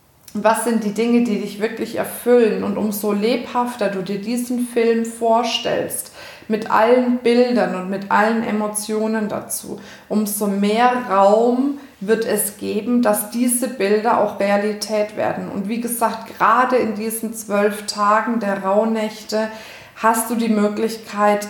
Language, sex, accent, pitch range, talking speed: German, female, German, 210-235 Hz, 140 wpm